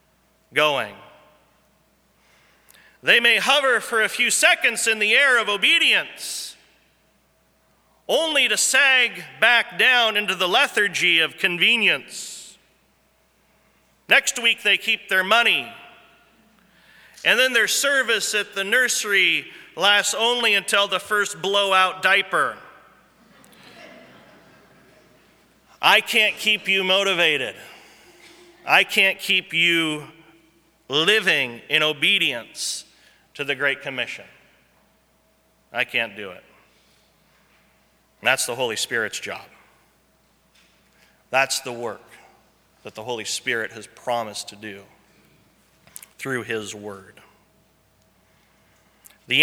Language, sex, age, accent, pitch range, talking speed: English, male, 40-59, American, 155-215 Hz, 100 wpm